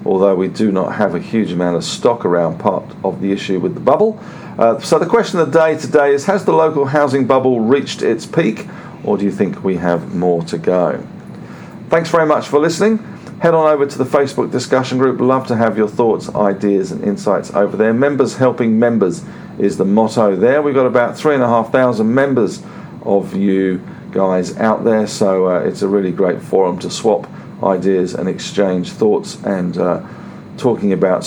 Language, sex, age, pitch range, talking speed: English, male, 50-69, 100-155 Hz, 195 wpm